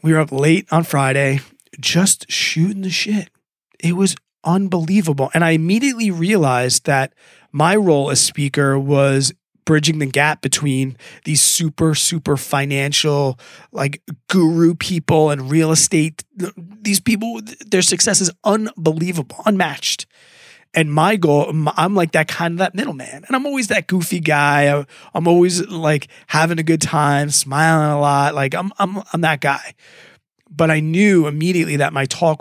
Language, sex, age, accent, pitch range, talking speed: English, male, 20-39, American, 145-180 Hz, 155 wpm